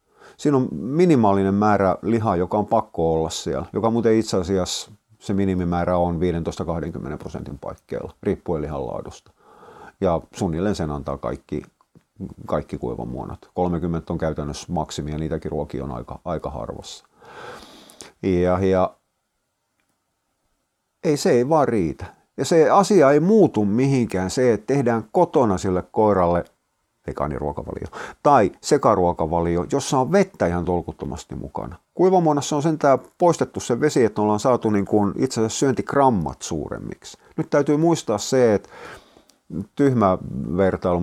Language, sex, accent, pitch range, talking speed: Finnish, male, native, 80-115 Hz, 125 wpm